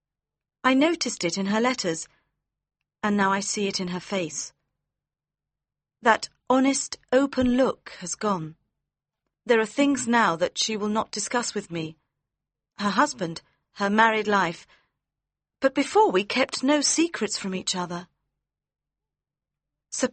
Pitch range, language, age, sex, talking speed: 155-245 Hz, Persian, 40-59, female, 135 wpm